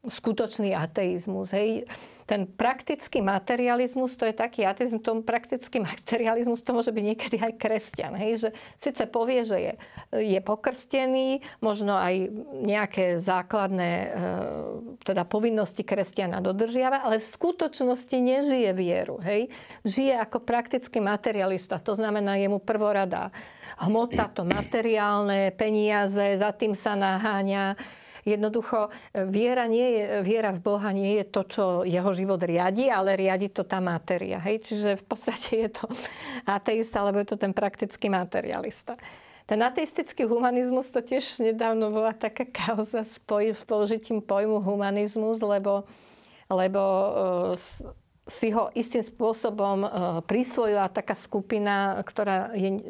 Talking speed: 130 wpm